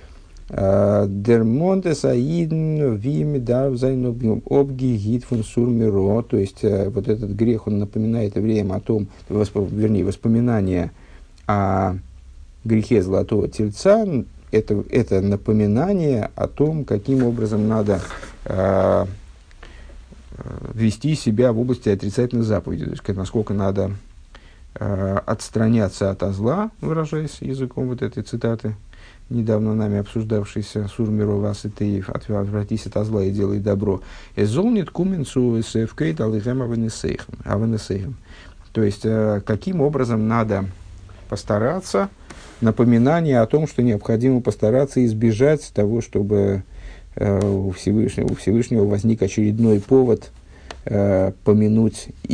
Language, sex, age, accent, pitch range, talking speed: Russian, male, 50-69, native, 100-120 Hz, 100 wpm